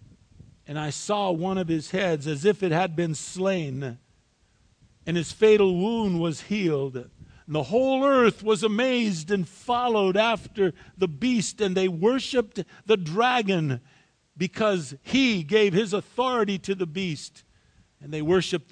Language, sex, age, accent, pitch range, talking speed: English, male, 50-69, American, 150-195 Hz, 145 wpm